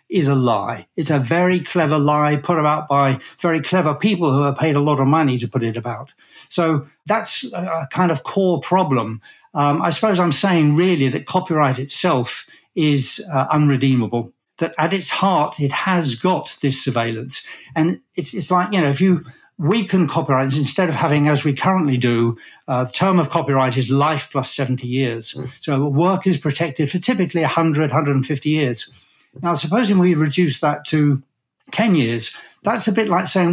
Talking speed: 185 wpm